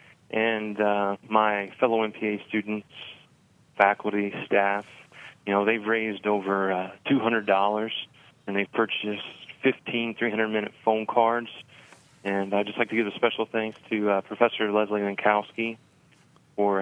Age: 30-49